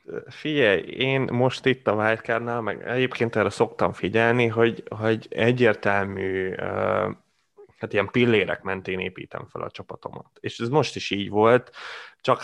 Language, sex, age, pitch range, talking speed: Hungarian, male, 20-39, 105-120 Hz, 140 wpm